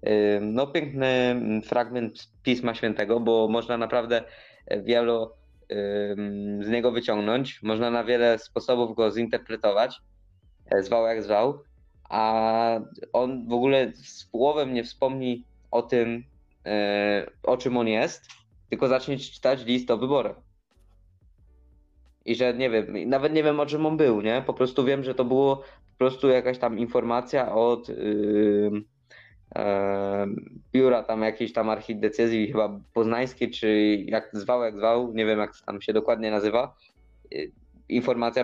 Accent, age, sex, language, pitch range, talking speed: native, 20-39, male, Polish, 105-130 Hz, 135 wpm